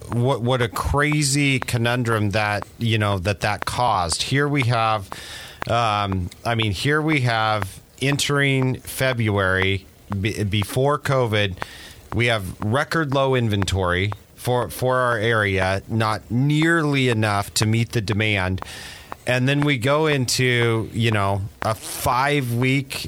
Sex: male